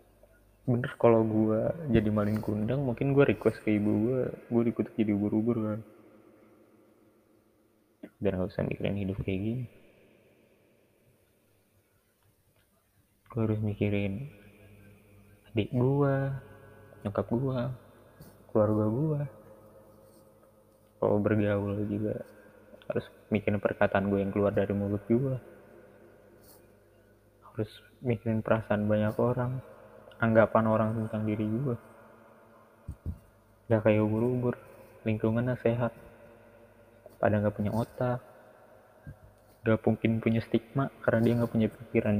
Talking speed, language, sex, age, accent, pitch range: 100 wpm, Indonesian, male, 20-39, native, 105-115 Hz